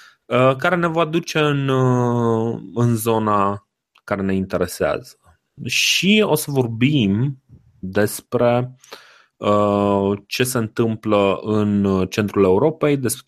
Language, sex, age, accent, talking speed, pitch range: Romanian, male, 20-39, native, 105 wpm, 100-130 Hz